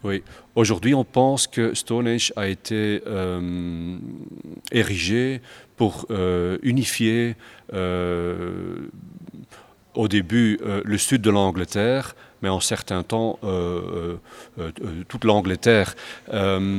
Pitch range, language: 95-115 Hz, French